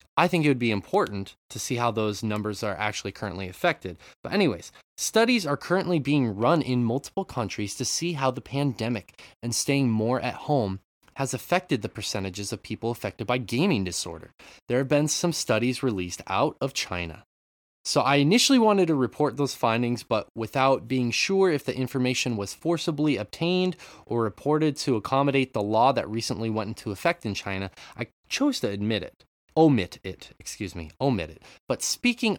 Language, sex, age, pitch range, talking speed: English, male, 20-39, 105-150 Hz, 180 wpm